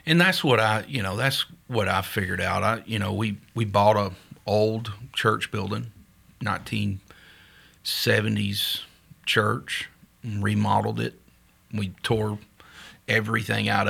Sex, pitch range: male, 100-115 Hz